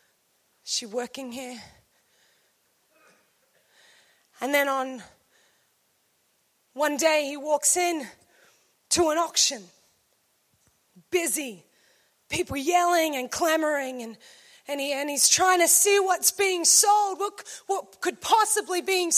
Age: 20-39